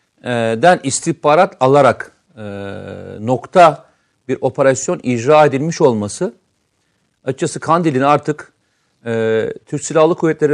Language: Turkish